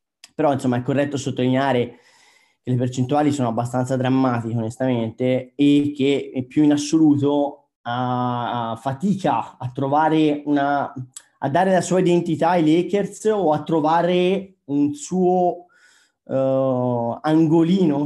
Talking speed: 125 wpm